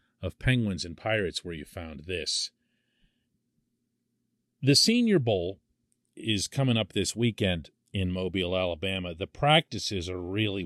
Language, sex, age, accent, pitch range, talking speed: English, male, 40-59, American, 95-120 Hz, 130 wpm